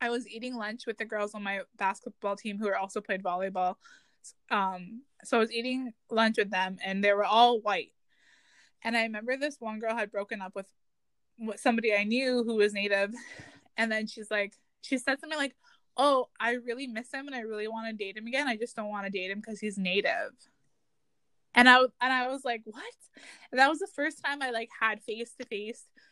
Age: 20-39